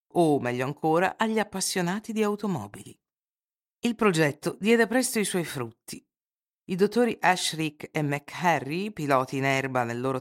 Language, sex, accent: Italian, female, native